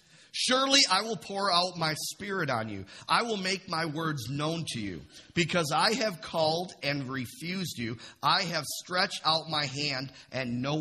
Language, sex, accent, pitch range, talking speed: English, male, American, 130-170 Hz, 180 wpm